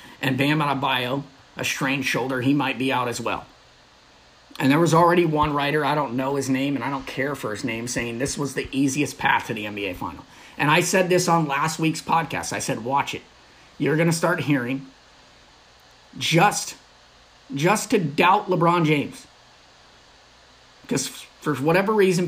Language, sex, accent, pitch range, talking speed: English, male, American, 130-170 Hz, 185 wpm